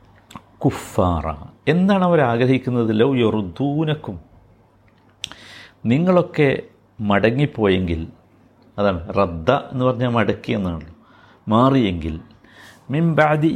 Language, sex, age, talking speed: Malayalam, male, 50-69, 60 wpm